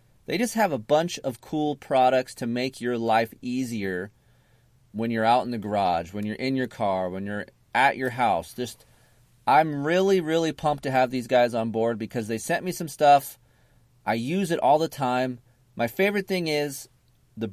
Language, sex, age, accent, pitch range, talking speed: English, male, 30-49, American, 120-170 Hz, 195 wpm